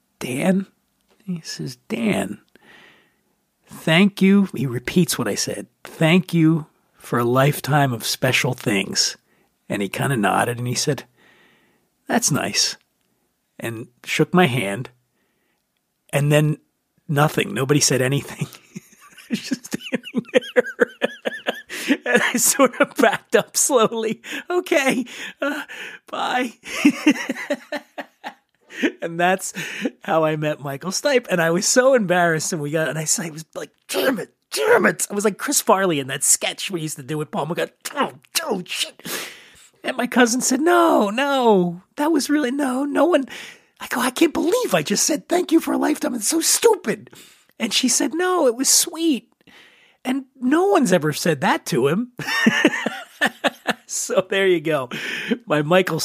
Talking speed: 155 wpm